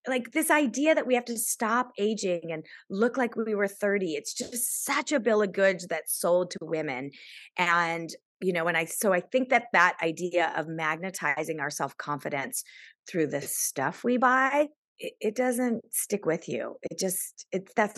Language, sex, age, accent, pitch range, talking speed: English, female, 30-49, American, 170-225 Hz, 190 wpm